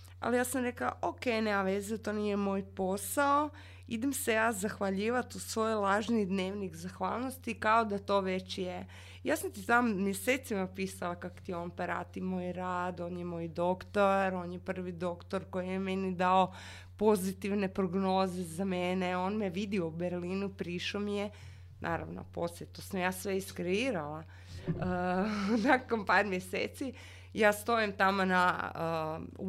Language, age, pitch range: Croatian, 20-39, 170-215 Hz